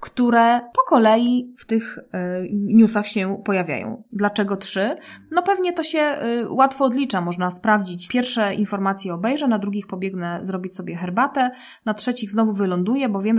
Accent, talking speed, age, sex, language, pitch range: native, 150 wpm, 20-39, female, Polish, 185-235 Hz